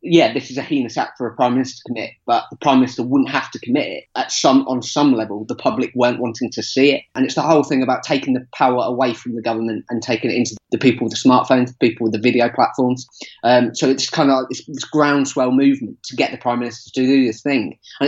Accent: British